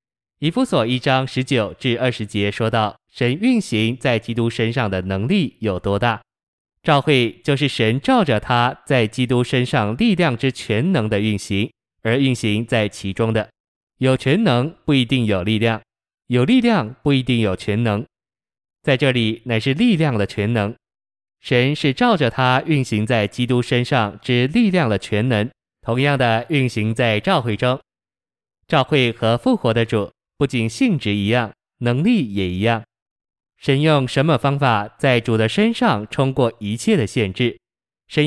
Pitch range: 110-140 Hz